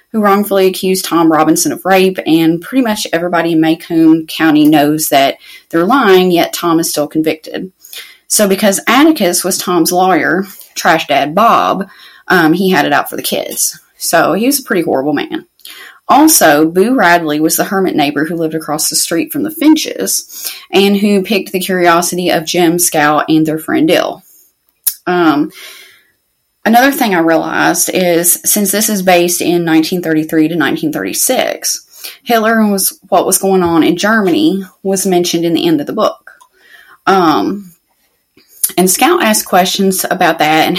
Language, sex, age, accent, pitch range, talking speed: English, female, 30-49, American, 165-210 Hz, 165 wpm